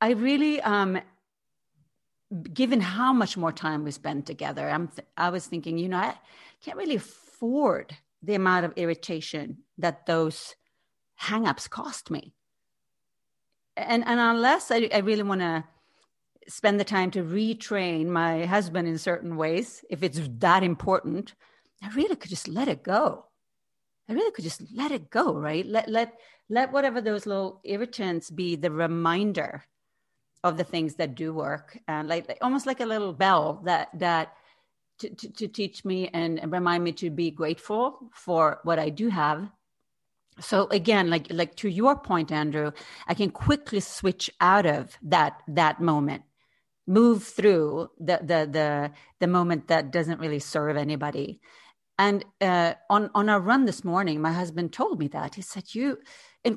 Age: 40-59